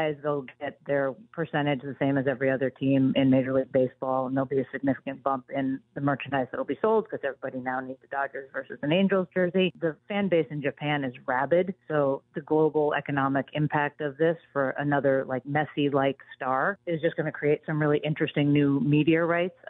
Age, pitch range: 40-59, 135-160 Hz